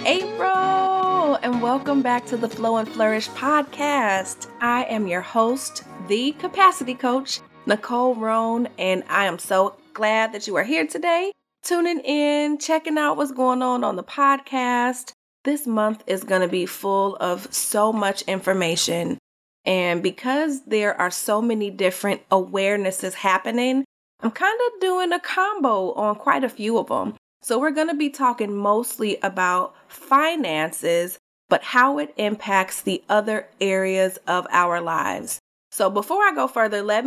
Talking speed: 155 wpm